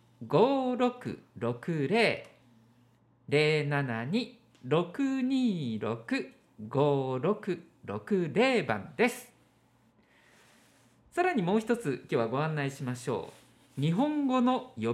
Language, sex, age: Japanese, male, 50-69